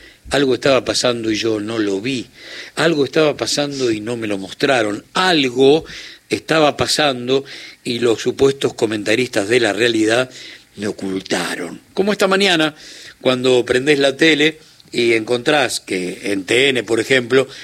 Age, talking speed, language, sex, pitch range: 60-79, 145 wpm, Spanish, male, 115-150 Hz